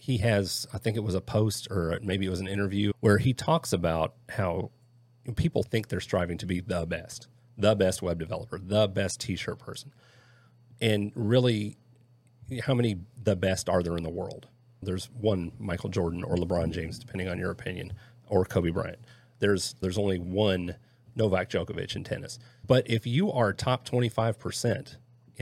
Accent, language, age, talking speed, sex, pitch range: American, English, 40-59, 175 wpm, male, 95-120 Hz